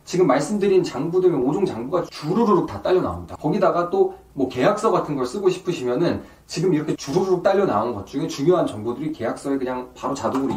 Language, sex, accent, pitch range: Korean, male, native, 125-185 Hz